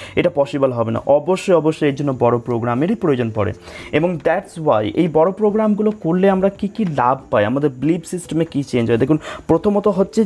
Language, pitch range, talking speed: Bengali, 150-190 Hz, 195 wpm